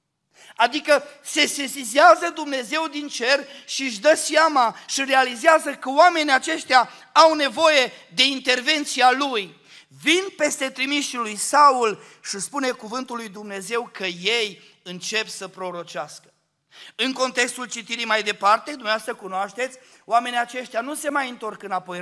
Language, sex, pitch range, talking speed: Romanian, male, 215-285 Hz, 135 wpm